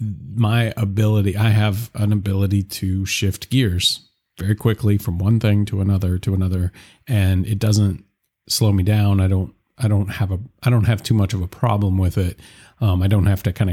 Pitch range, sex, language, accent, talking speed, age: 95-115 Hz, male, English, American, 200 wpm, 40-59